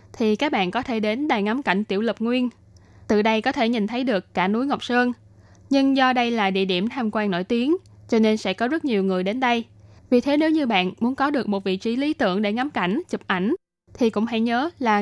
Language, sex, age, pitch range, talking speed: Vietnamese, female, 10-29, 200-250 Hz, 260 wpm